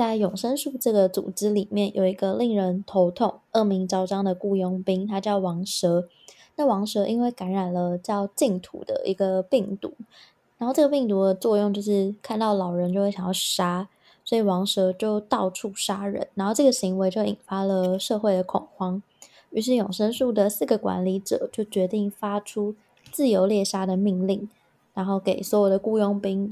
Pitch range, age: 190-220 Hz, 20-39